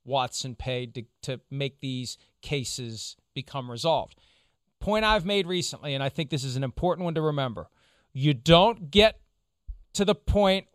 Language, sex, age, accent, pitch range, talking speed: English, male, 40-59, American, 140-195 Hz, 160 wpm